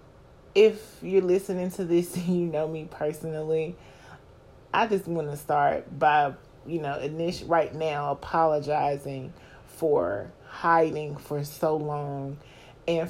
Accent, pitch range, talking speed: American, 145-170 Hz, 125 wpm